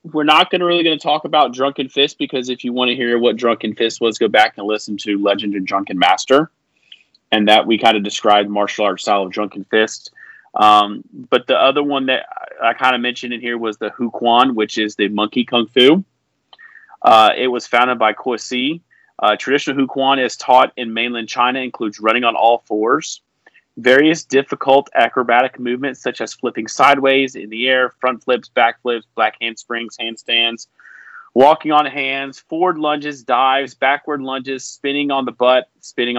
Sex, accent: male, American